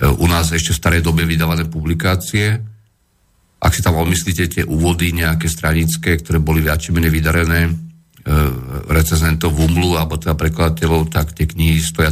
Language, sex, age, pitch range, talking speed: Slovak, male, 50-69, 80-85 Hz, 155 wpm